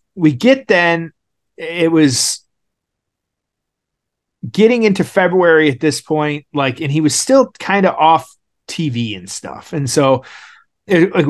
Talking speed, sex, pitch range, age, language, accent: 135 wpm, male, 130-180 Hz, 30-49, English, American